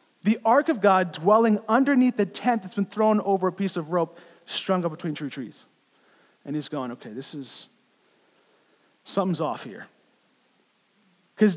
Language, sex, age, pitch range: English, male, 40-59, 175-230 Hz